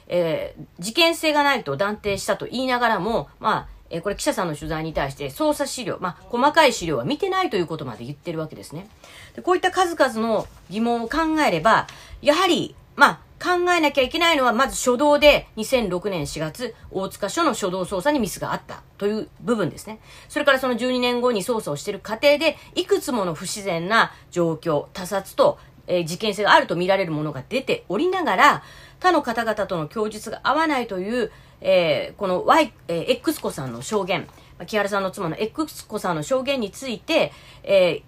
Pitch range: 180-290 Hz